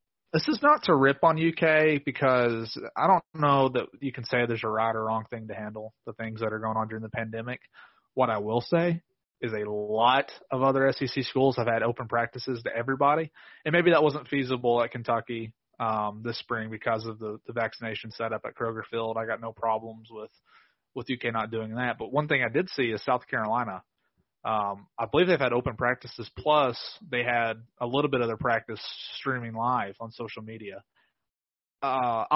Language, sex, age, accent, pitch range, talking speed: English, male, 20-39, American, 115-135 Hz, 200 wpm